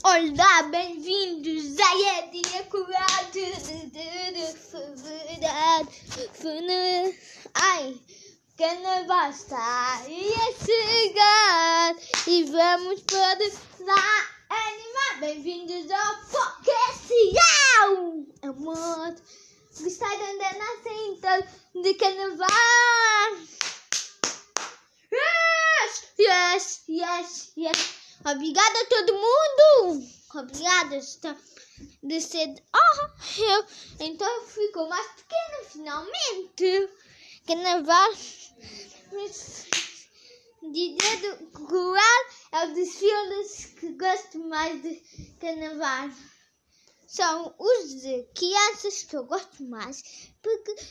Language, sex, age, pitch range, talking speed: Portuguese, female, 20-39, 320-410 Hz, 80 wpm